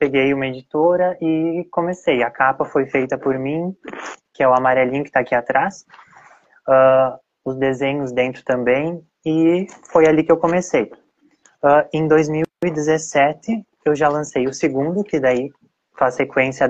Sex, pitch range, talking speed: male, 125-155 Hz, 145 wpm